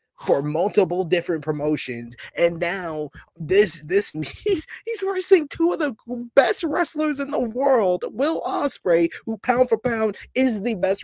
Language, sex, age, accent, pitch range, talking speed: English, male, 20-39, American, 140-230 Hz, 150 wpm